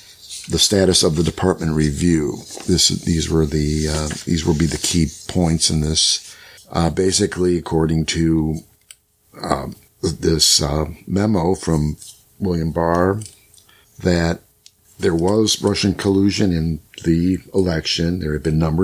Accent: American